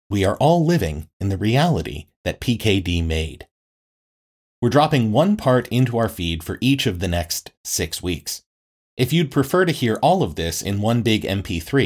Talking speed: 180 wpm